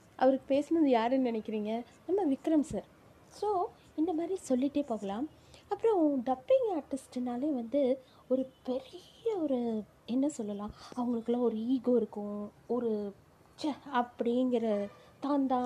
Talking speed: 105 wpm